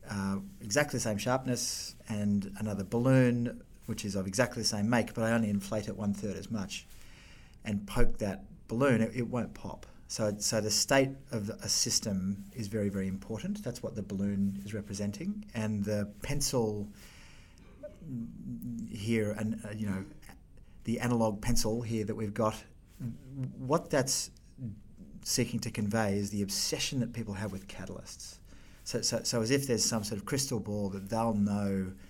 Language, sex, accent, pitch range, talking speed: English, male, Australian, 100-115 Hz, 170 wpm